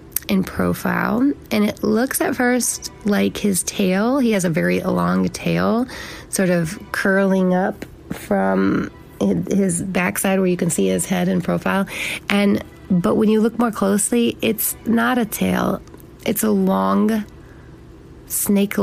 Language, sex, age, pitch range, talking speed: English, female, 30-49, 165-210 Hz, 145 wpm